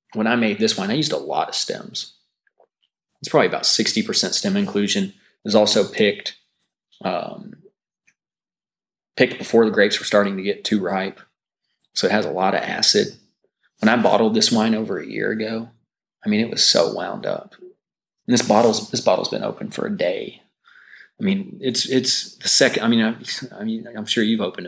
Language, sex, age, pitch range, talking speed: English, male, 30-49, 105-130 Hz, 195 wpm